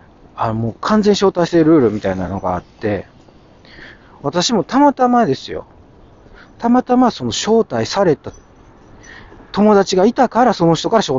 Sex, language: male, Japanese